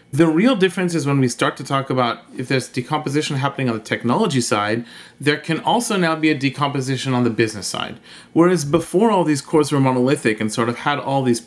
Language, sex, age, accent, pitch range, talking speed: English, male, 30-49, American, 125-170 Hz, 220 wpm